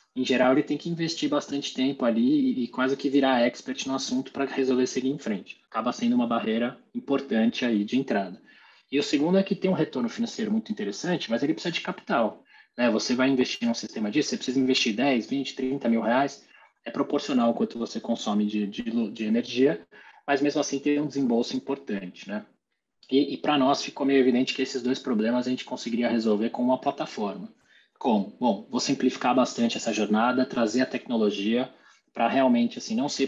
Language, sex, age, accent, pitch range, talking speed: Portuguese, male, 20-39, Brazilian, 115-150 Hz, 200 wpm